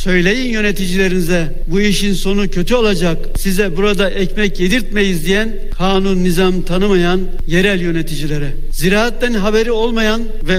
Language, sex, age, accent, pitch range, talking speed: Turkish, male, 60-79, native, 180-215 Hz, 120 wpm